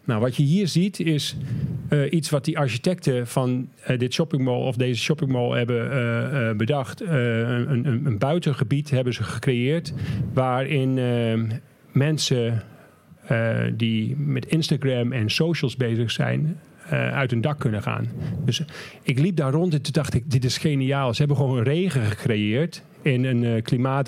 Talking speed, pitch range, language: 170 wpm, 120-150 Hz, Dutch